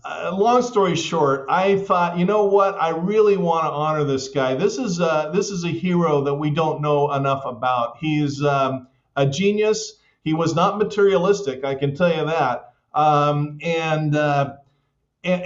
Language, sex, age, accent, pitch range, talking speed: English, male, 40-59, American, 145-180 Hz, 180 wpm